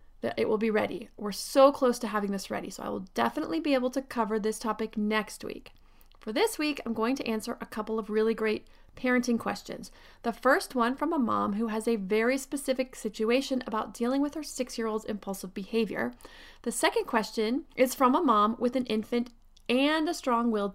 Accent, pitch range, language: American, 215-265 Hz, English